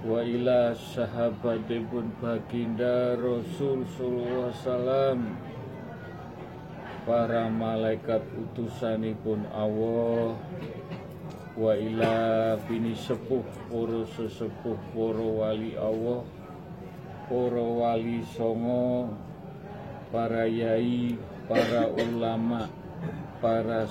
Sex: male